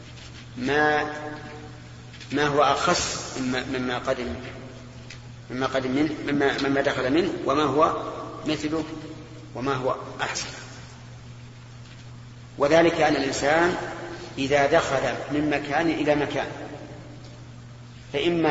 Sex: male